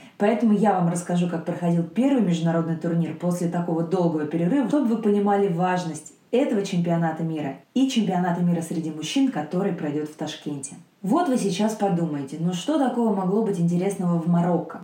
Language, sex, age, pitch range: Russian, female, 20-39, 170-215 Hz